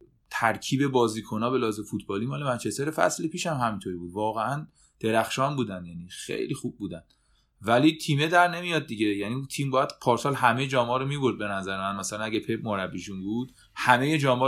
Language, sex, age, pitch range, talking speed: Persian, male, 30-49, 100-125 Hz, 175 wpm